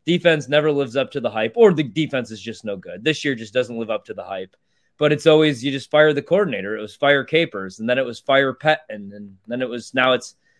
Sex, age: male, 20-39